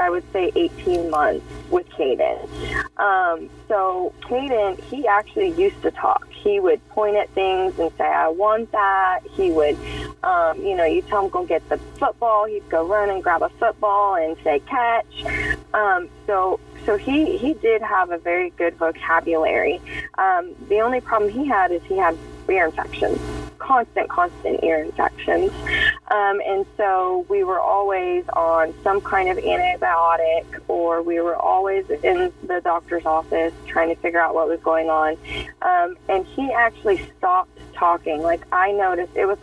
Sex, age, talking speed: female, 20-39, 170 wpm